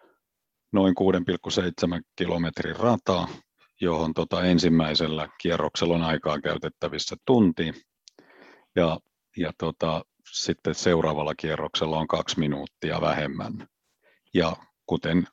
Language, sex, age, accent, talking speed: Finnish, male, 50-69, native, 95 wpm